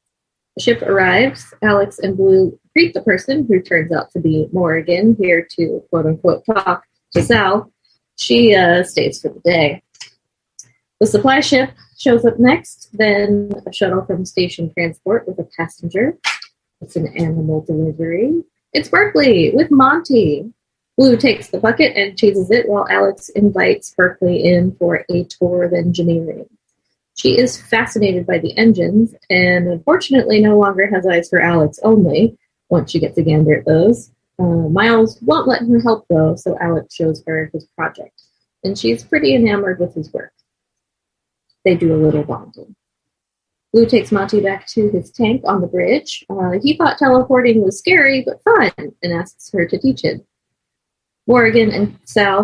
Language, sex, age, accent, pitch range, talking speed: English, female, 30-49, American, 175-230 Hz, 160 wpm